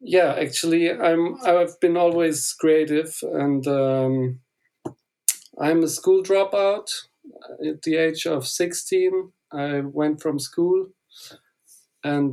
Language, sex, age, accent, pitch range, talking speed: English, male, 50-69, German, 140-165 Hz, 110 wpm